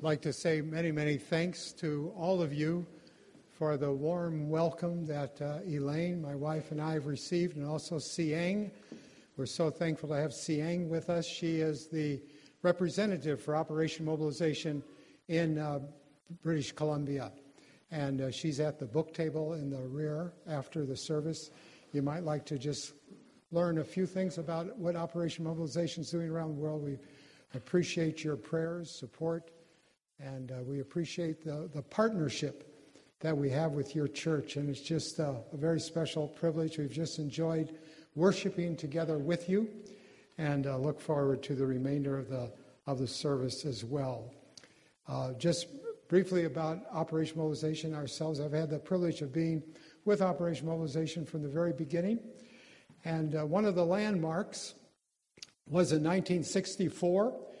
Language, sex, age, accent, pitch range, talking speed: English, male, 60-79, American, 145-170 Hz, 160 wpm